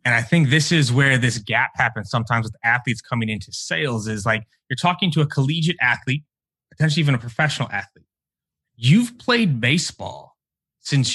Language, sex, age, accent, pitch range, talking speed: English, male, 30-49, American, 110-145 Hz, 170 wpm